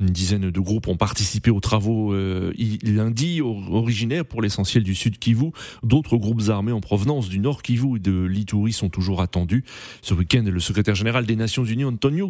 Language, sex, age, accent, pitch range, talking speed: French, male, 30-49, French, 105-130 Hz, 190 wpm